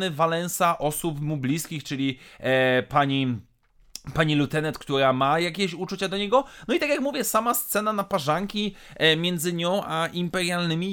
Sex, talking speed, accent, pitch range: male, 155 wpm, native, 160-210 Hz